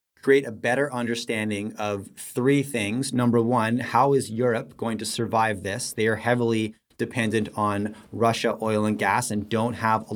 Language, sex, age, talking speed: English, male, 30-49, 170 wpm